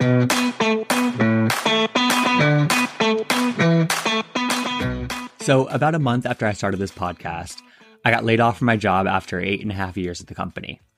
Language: English